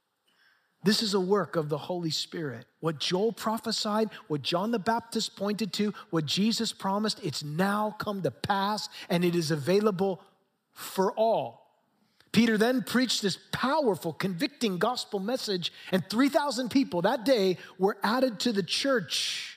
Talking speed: 150 wpm